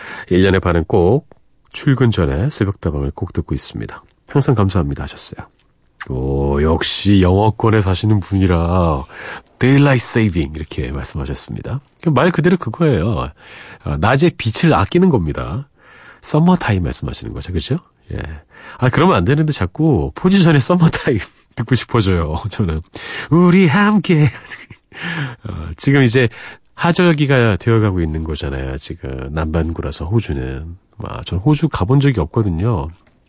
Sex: male